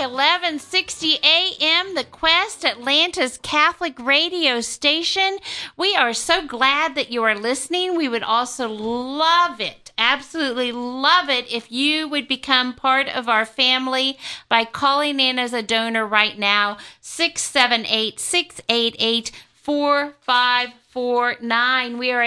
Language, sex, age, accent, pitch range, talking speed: English, female, 50-69, American, 235-295 Hz, 115 wpm